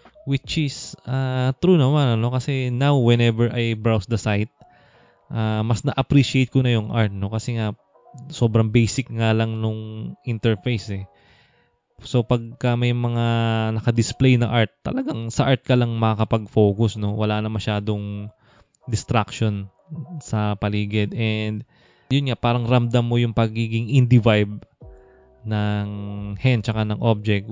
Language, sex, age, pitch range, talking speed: English, male, 20-39, 105-130 Hz, 140 wpm